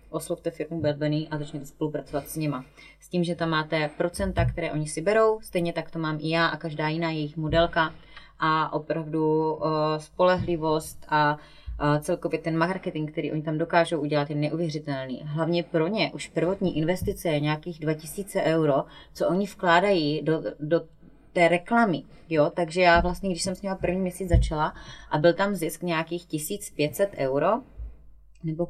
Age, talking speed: 20-39, 165 wpm